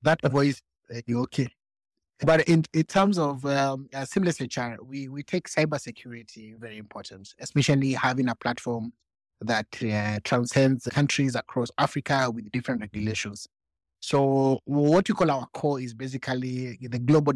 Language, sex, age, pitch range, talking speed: English, male, 30-49, 120-140 Hz, 150 wpm